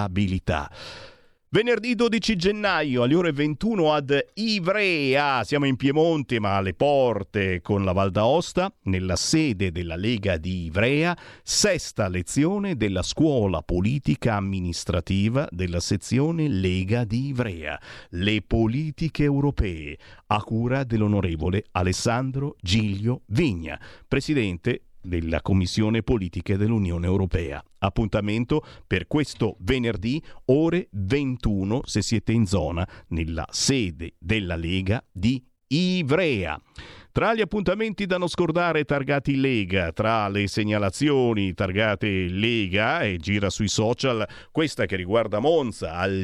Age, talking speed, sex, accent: 50-69, 115 wpm, male, native